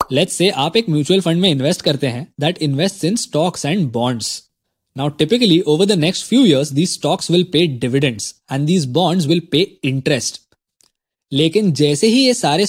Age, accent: 20-39, native